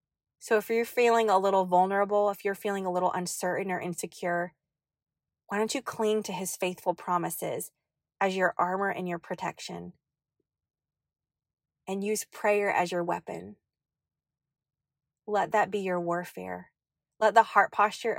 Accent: American